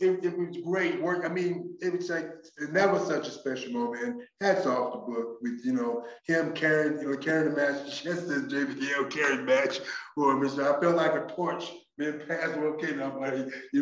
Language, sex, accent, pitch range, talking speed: English, male, American, 140-185 Hz, 215 wpm